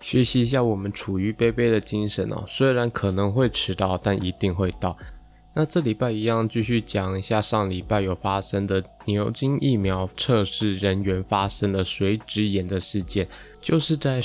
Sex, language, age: male, Chinese, 20-39